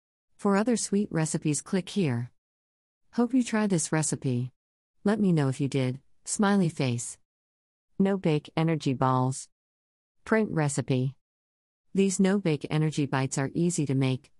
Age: 50-69